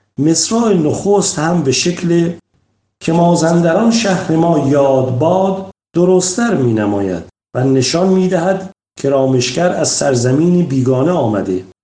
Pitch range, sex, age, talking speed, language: 130-185 Hz, male, 50-69, 115 wpm, Persian